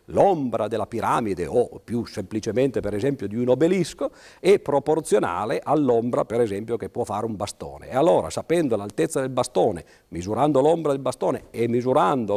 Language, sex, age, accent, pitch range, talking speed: Italian, male, 50-69, native, 100-155 Hz, 160 wpm